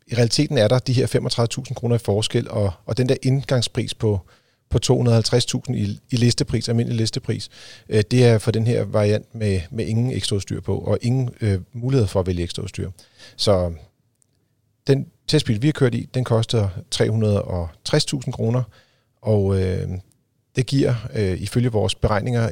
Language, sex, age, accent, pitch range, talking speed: Danish, male, 40-59, native, 105-125 Hz, 150 wpm